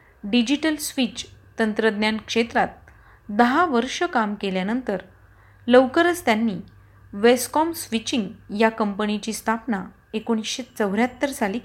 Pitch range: 205-260 Hz